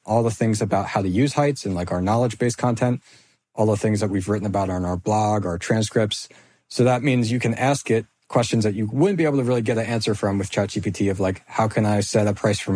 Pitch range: 105-125 Hz